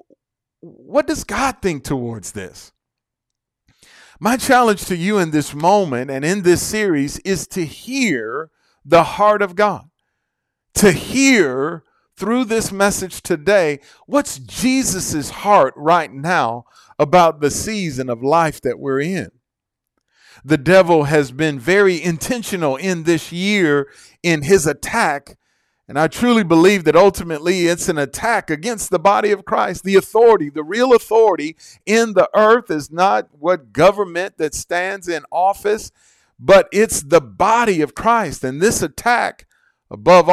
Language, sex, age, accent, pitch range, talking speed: English, male, 40-59, American, 150-205 Hz, 140 wpm